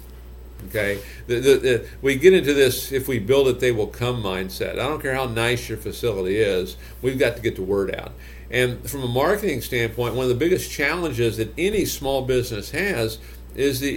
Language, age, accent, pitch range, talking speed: English, 50-69, American, 95-135 Hz, 205 wpm